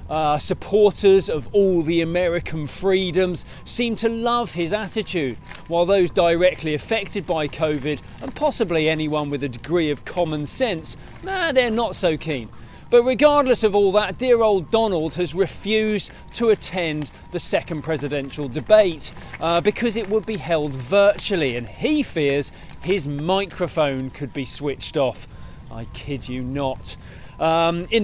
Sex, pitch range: male, 150-195 Hz